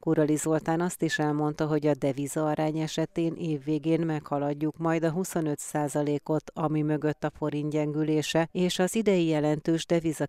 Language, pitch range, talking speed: Hungarian, 150-165 Hz, 150 wpm